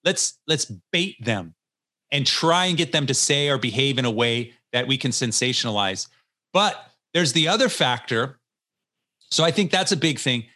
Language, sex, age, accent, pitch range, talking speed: English, male, 40-59, American, 120-160 Hz, 180 wpm